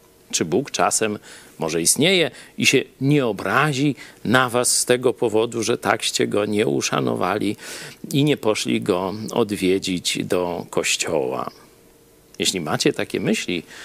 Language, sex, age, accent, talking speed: Polish, male, 50-69, native, 130 wpm